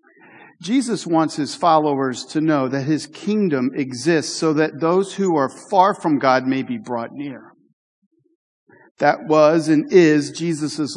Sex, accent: male, American